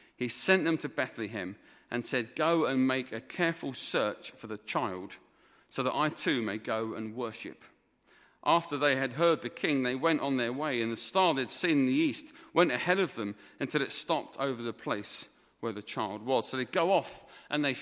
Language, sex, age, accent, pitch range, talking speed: English, male, 40-59, British, 125-170 Hz, 210 wpm